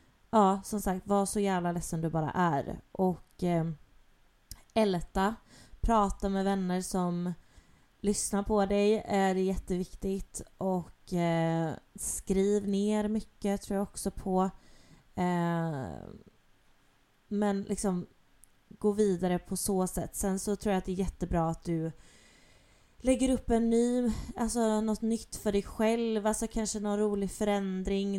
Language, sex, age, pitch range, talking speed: Swedish, female, 20-39, 185-215 Hz, 135 wpm